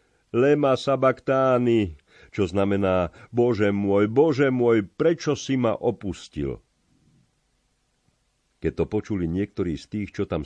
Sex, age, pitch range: male, 50-69, 80-100 Hz